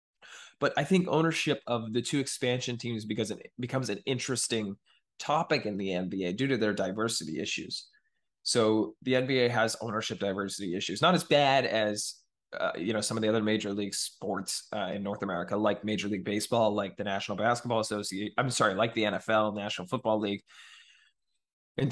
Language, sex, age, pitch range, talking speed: English, male, 20-39, 105-125 Hz, 180 wpm